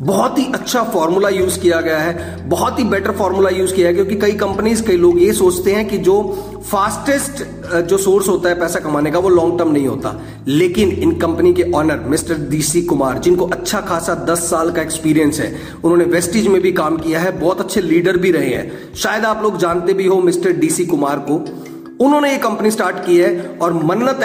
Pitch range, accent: 170-215 Hz, native